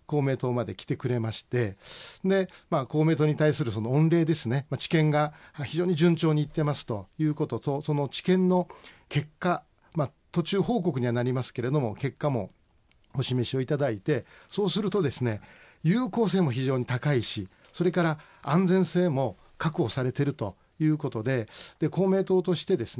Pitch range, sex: 120-170 Hz, male